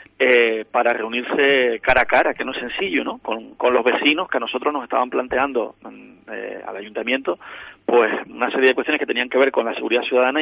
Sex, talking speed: male, 215 wpm